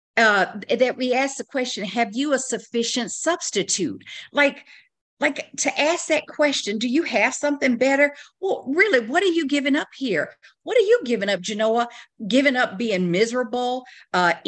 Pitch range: 175-240 Hz